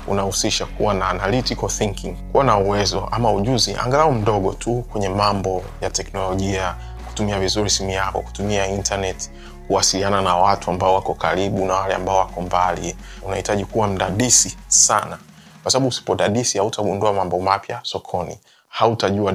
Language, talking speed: Swahili, 145 wpm